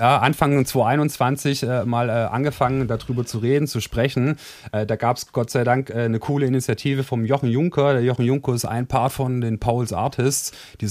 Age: 30-49